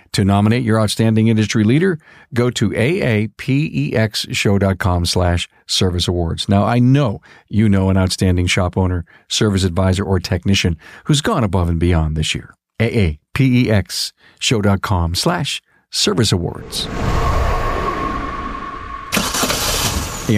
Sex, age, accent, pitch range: male, 50-69, American, 100-135 Hz